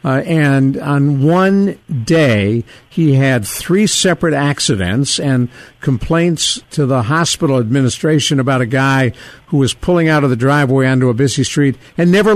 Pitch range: 125-165 Hz